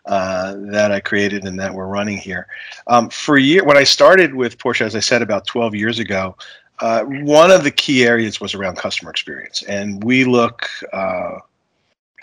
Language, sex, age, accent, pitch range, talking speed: English, male, 40-59, American, 105-125 Hz, 190 wpm